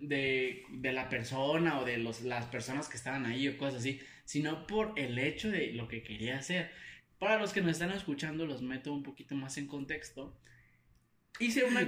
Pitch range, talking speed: 115-165 Hz, 195 wpm